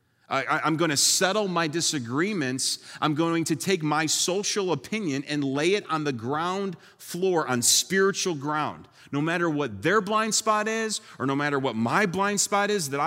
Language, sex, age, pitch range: English, male, 30-49, 120-185 Hz